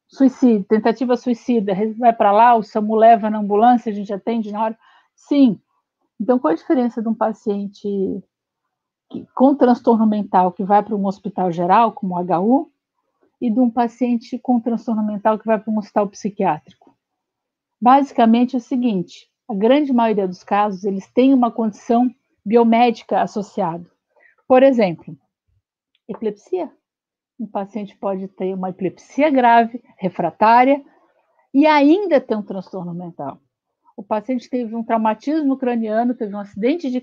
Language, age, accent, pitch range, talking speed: Portuguese, 50-69, Brazilian, 210-260 Hz, 145 wpm